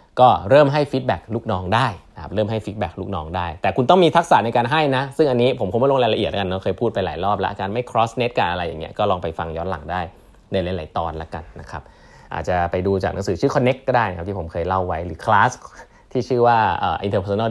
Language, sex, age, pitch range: Thai, male, 20-39, 95-130 Hz